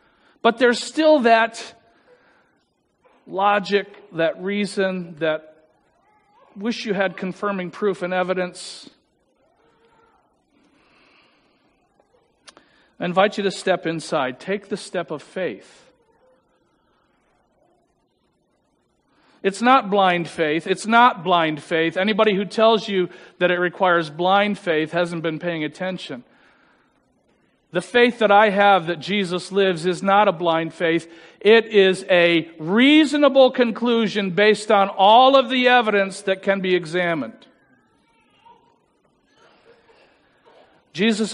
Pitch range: 170-225 Hz